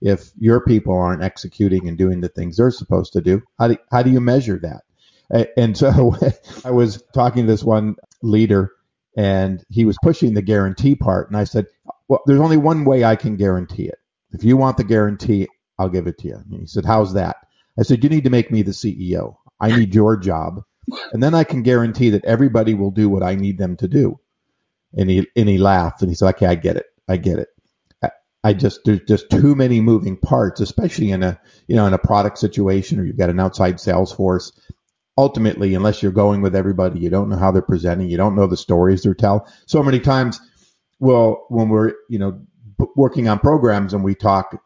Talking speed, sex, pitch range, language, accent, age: 215 wpm, male, 95-120 Hz, English, American, 50-69